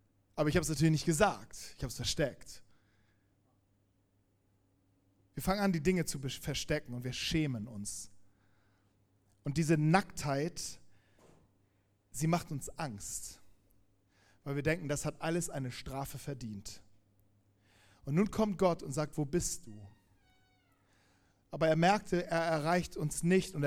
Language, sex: German, male